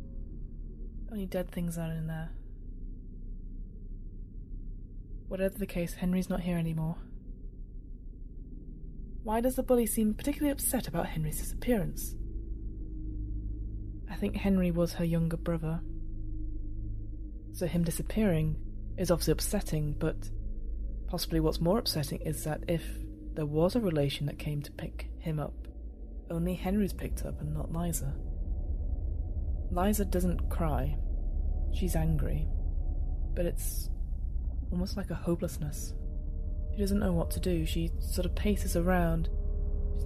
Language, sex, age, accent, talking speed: English, female, 20-39, British, 125 wpm